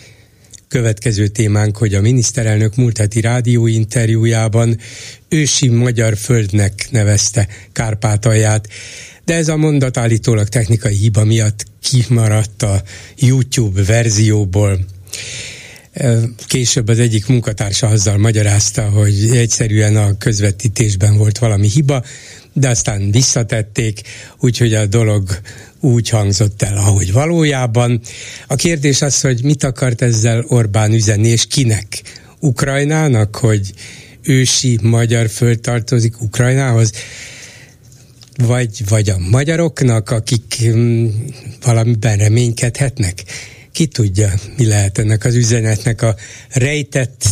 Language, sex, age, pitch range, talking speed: Hungarian, male, 60-79, 110-125 Hz, 105 wpm